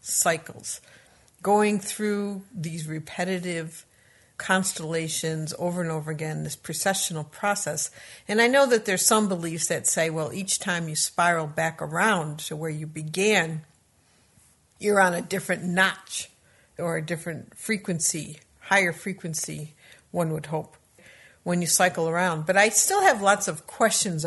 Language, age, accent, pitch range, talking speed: English, 60-79, American, 160-195 Hz, 145 wpm